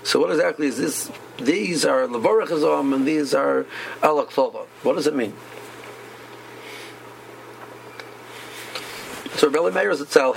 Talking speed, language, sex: 115 wpm, English, male